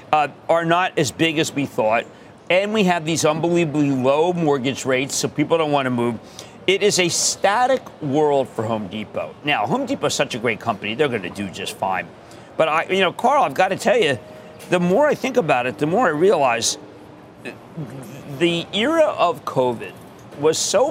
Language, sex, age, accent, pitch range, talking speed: English, male, 40-59, American, 130-170 Hz, 200 wpm